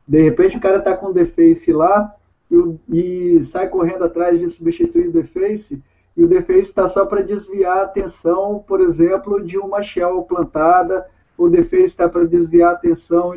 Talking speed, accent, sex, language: 180 wpm, Brazilian, male, Portuguese